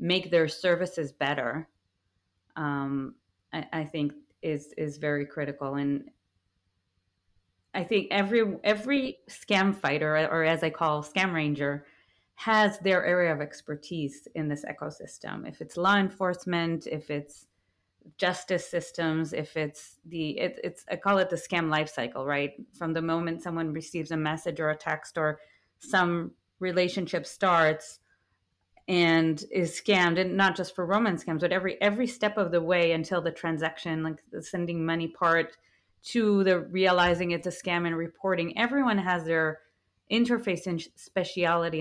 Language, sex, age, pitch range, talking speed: English, female, 30-49, 150-185 Hz, 150 wpm